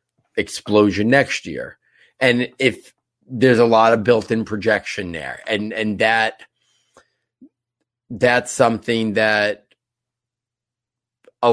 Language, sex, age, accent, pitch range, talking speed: English, male, 30-49, American, 105-120 Hz, 100 wpm